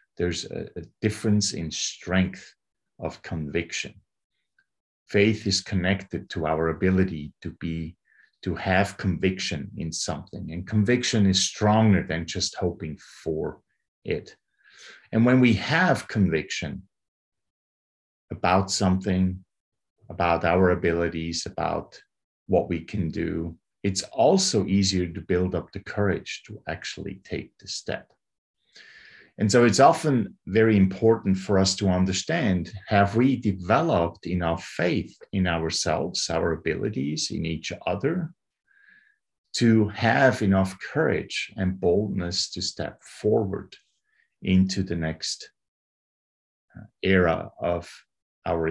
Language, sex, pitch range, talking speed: English, male, 90-105 Hz, 115 wpm